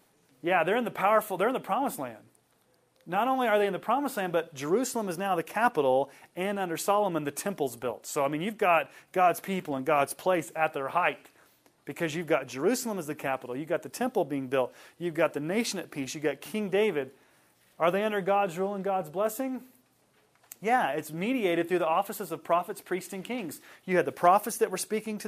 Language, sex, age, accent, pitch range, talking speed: English, male, 30-49, American, 155-215 Hz, 220 wpm